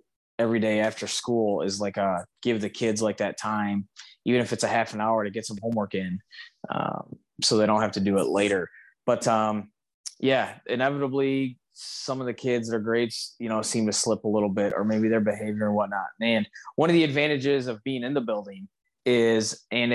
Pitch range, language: 105-120 Hz, English